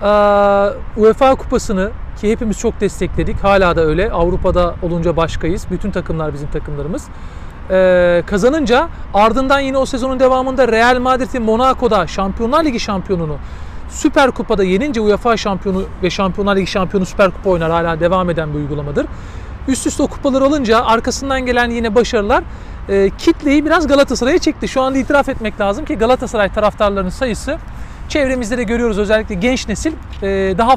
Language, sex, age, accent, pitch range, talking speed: Turkish, male, 40-59, native, 195-260 Hz, 145 wpm